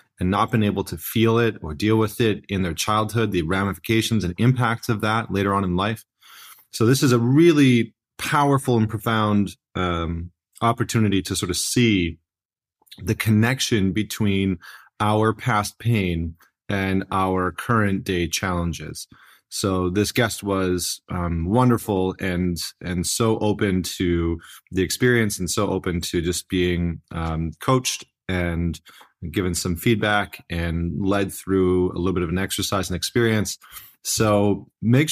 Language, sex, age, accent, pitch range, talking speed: English, male, 30-49, American, 90-110 Hz, 150 wpm